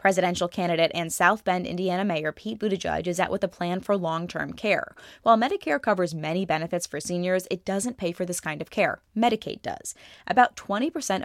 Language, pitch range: English, 165-205 Hz